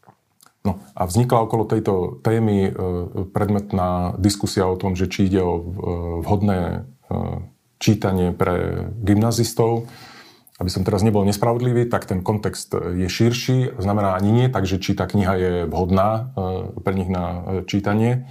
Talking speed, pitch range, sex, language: 135 wpm, 95-110 Hz, male, Slovak